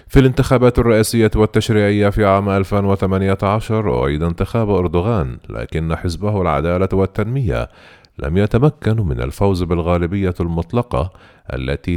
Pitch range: 85-110 Hz